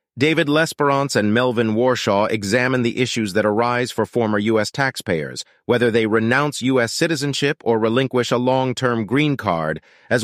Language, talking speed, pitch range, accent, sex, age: English, 150 wpm, 110-135 Hz, American, male, 40-59